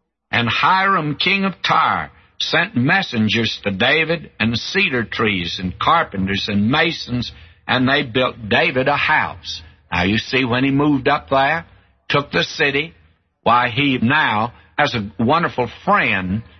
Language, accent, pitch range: English, American, 110-145 Hz